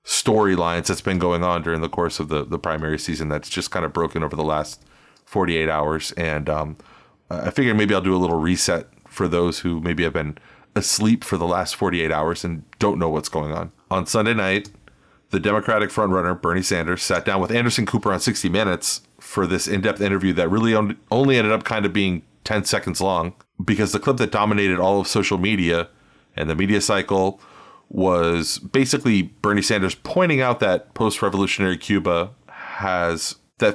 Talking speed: 190 wpm